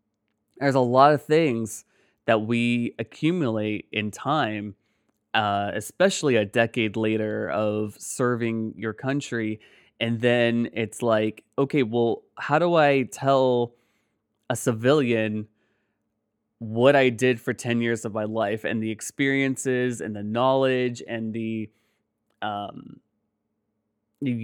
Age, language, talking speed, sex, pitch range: 20-39, English, 125 wpm, male, 110-135 Hz